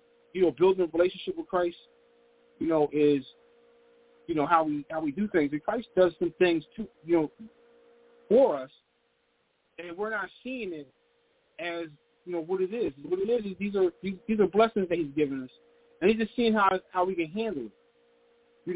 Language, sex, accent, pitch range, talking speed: English, male, American, 180-265 Hz, 200 wpm